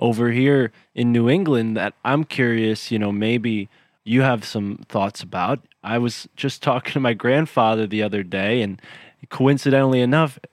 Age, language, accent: 20-39, English, American